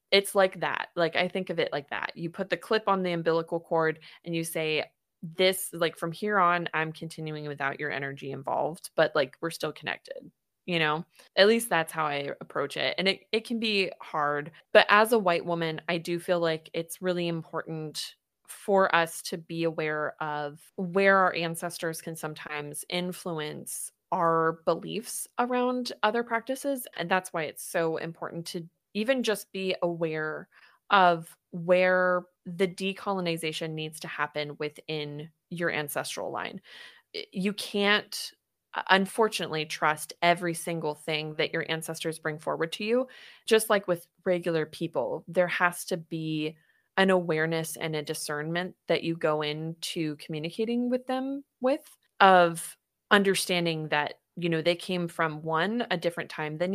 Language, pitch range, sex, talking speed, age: English, 160-190 Hz, female, 160 wpm, 20-39